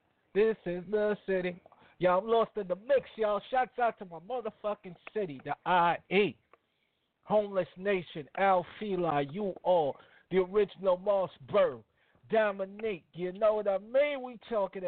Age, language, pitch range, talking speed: 50-69, English, 150-200 Hz, 145 wpm